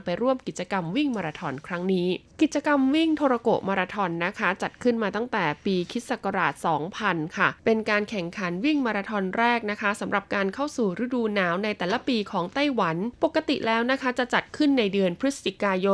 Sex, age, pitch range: female, 20-39, 190-235 Hz